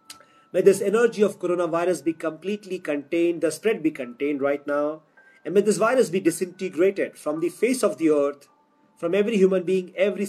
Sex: male